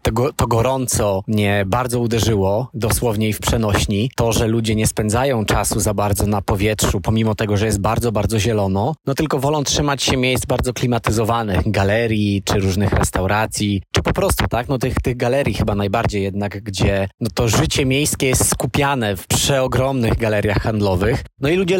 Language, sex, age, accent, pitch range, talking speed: Polish, male, 20-39, native, 105-130 Hz, 180 wpm